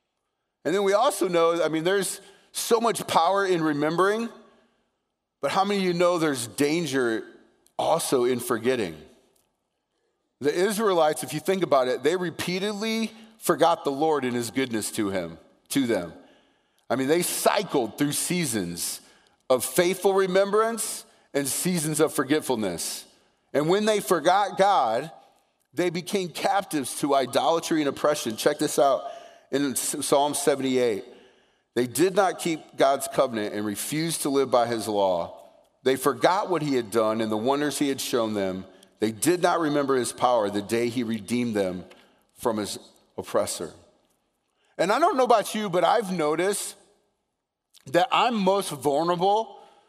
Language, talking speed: English, 155 wpm